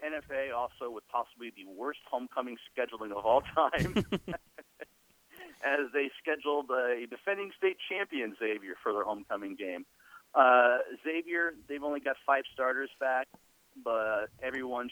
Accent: American